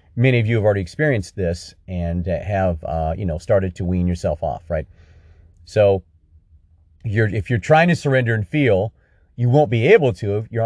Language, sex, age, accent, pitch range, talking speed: English, male, 40-59, American, 85-115 Hz, 190 wpm